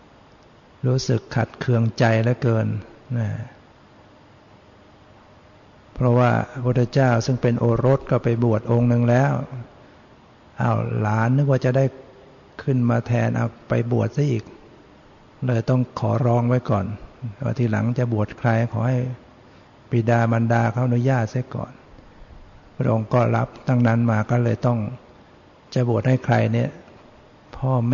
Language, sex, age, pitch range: Thai, male, 60-79, 115-125 Hz